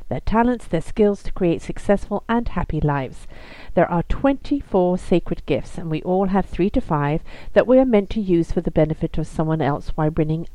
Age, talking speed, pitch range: 50-69, 210 wpm, 165-220 Hz